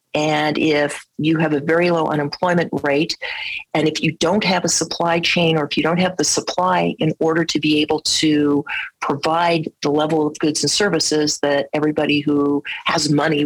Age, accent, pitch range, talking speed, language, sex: 40-59, American, 150-175 Hz, 185 wpm, English, female